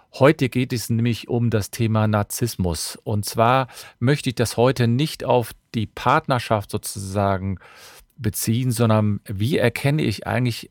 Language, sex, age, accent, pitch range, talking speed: German, male, 40-59, German, 100-125 Hz, 140 wpm